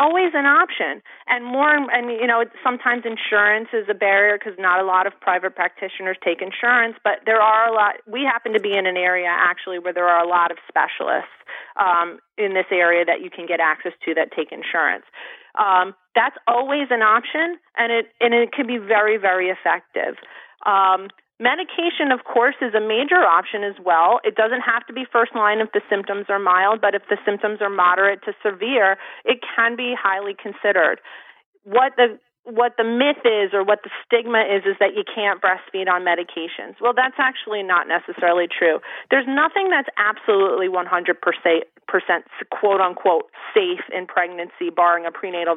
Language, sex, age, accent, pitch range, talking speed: English, female, 30-49, American, 185-240 Hz, 185 wpm